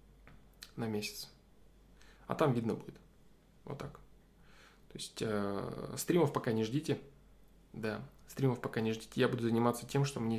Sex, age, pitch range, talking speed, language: male, 20-39, 110-135 Hz, 155 wpm, Russian